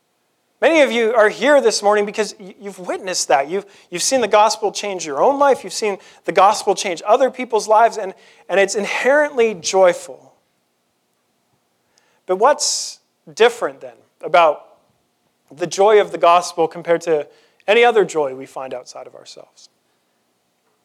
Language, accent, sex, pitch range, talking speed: English, American, male, 150-210 Hz, 155 wpm